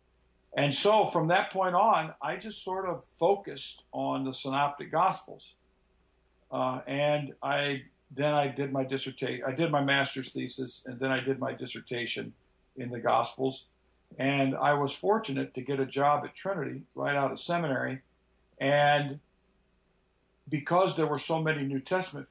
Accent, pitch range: American, 130-165 Hz